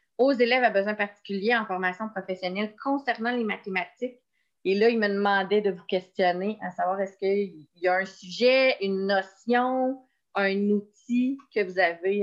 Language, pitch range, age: French, 190-245 Hz, 30-49